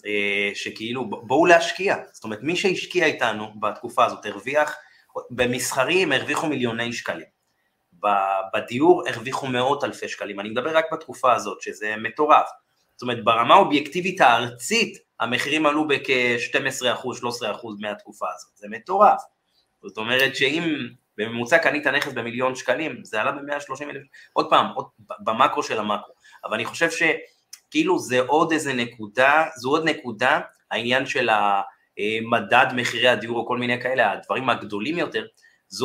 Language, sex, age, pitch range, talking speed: Hebrew, male, 30-49, 105-145 Hz, 135 wpm